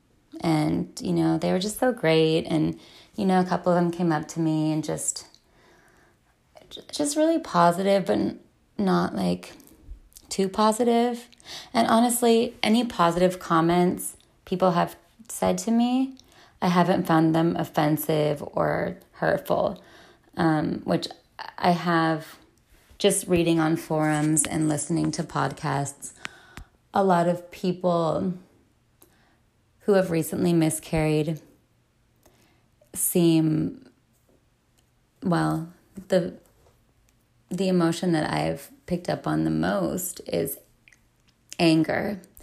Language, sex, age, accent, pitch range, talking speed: English, female, 20-39, American, 155-190 Hz, 115 wpm